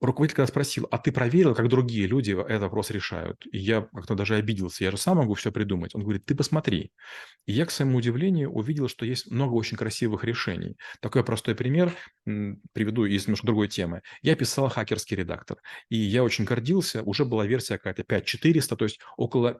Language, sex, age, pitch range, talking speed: Russian, male, 30-49, 105-140 Hz, 190 wpm